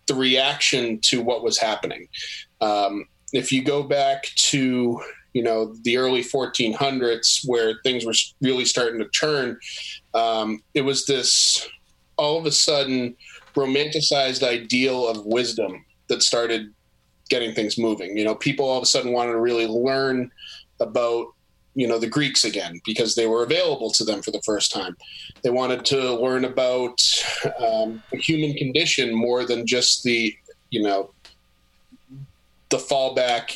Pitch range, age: 115-135 Hz, 20-39